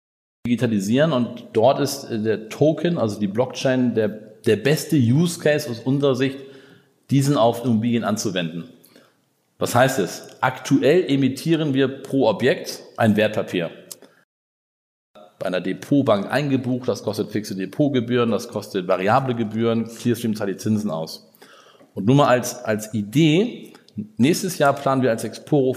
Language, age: German, 40-59